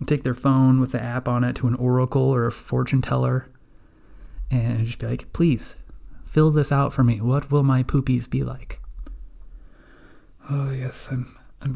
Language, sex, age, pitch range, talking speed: English, male, 30-49, 120-140 Hz, 180 wpm